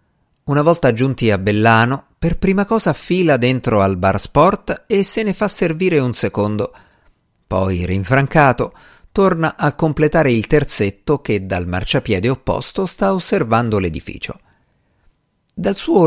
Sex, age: male, 50-69